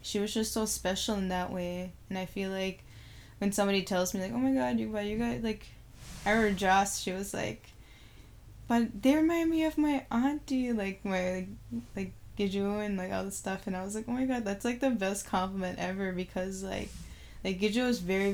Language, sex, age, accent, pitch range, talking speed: English, female, 10-29, American, 185-210 Hz, 215 wpm